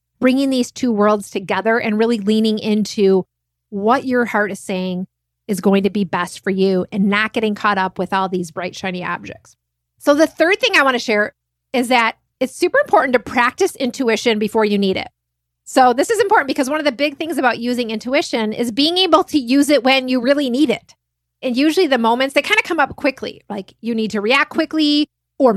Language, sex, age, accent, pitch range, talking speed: English, female, 30-49, American, 200-270 Hz, 220 wpm